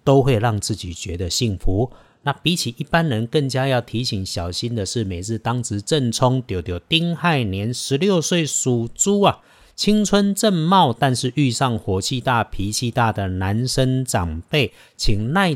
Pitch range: 105-135 Hz